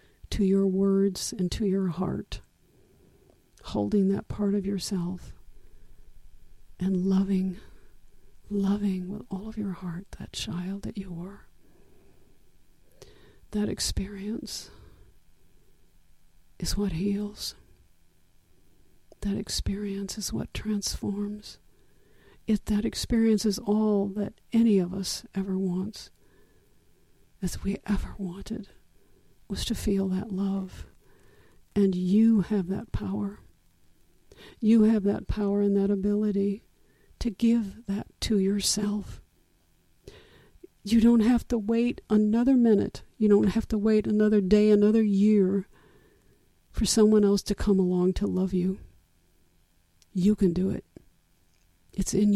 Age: 50-69